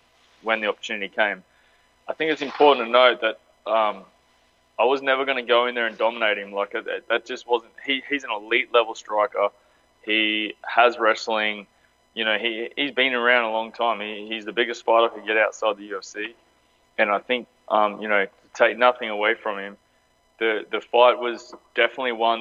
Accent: Australian